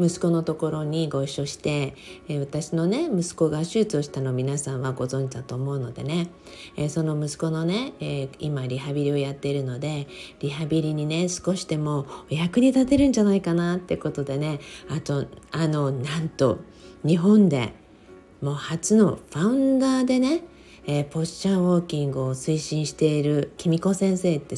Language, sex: Japanese, female